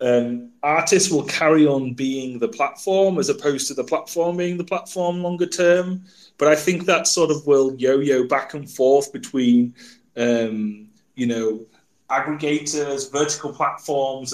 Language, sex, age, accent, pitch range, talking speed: English, male, 30-49, British, 125-170 Hz, 150 wpm